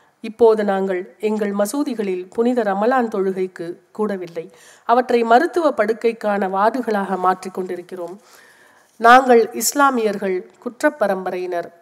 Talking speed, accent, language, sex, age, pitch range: 85 wpm, native, Tamil, female, 50-69, 190-245 Hz